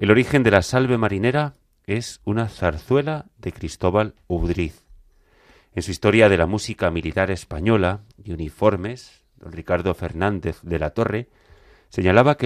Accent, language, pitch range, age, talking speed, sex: Spanish, Spanish, 85-115 Hz, 30-49, 145 wpm, male